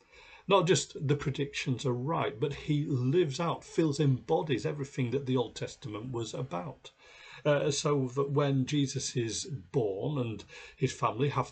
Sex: male